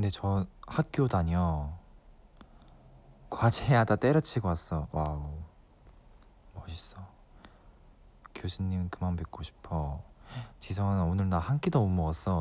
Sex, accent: male, native